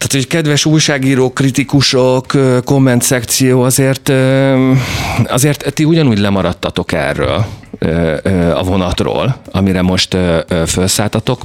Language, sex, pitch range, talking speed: Hungarian, male, 90-120 Hz, 95 wpm